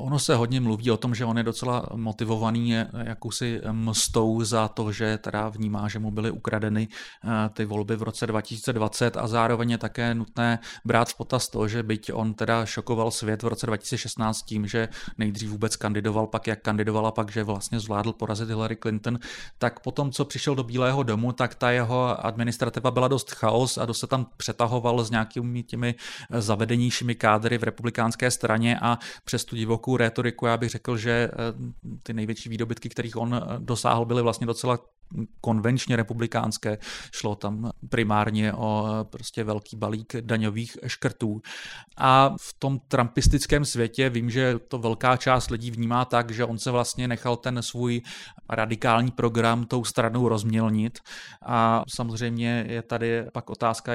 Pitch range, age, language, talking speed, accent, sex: 110-120 Hz, 30-49, Czech, 160 wpm, native, male